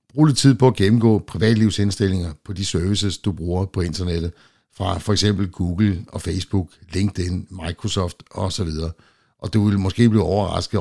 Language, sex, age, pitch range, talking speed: Danish, male, 60-79, 85-100 Hz, 160 wpm